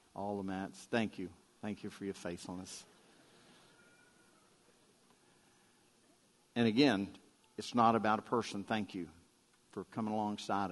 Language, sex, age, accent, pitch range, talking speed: English, male, 50-69, American, 100-125 Hz, 125 wpm